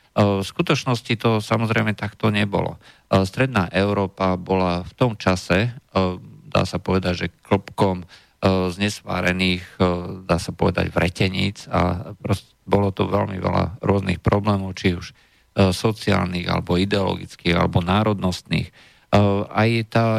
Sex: male